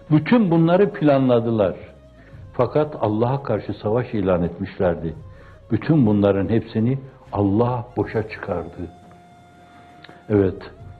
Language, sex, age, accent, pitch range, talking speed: Turkish, male, 60-79, native, 115-160 Hz, 85 wpm